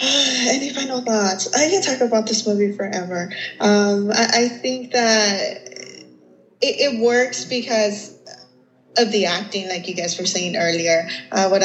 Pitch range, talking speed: 185-230 Hz, 155 wpm